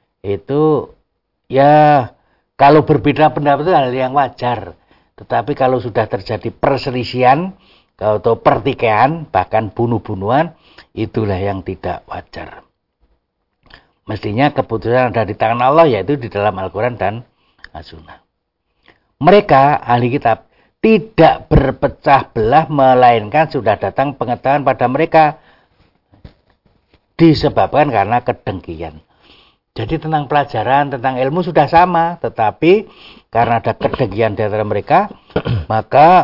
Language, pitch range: Indonesian, 105-145 Hz